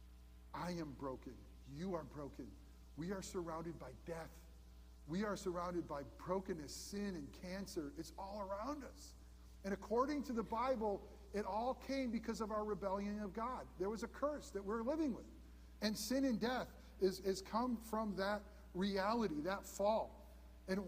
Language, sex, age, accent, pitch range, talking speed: English, male, 50-69, American, 145-220 Hz, 165 wpm